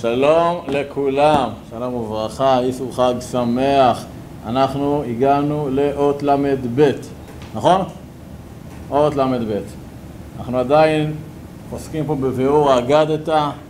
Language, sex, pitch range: Hebrew, male, 130-165 Hz